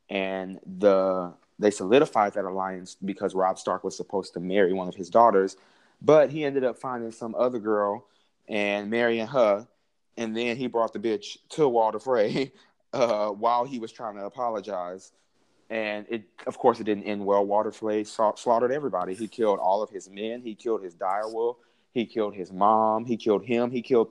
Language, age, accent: English, 30-49, American